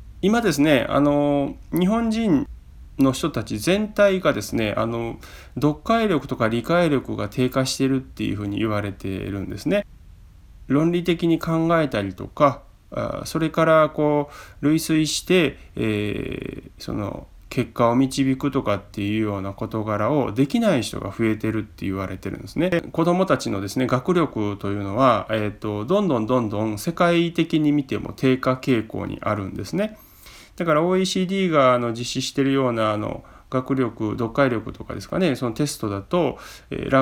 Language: Japanese